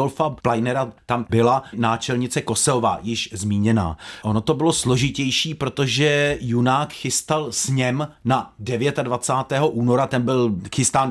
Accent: native